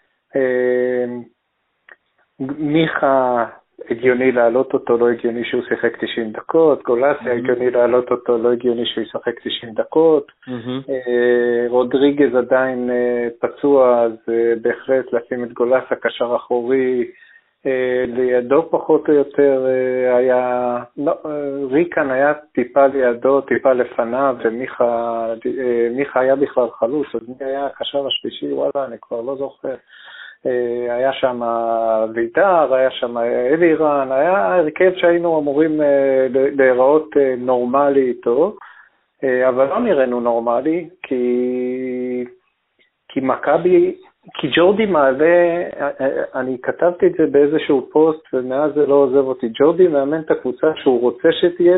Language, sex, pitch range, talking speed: Hebrew, male, 125-145 Hz, 110 wpm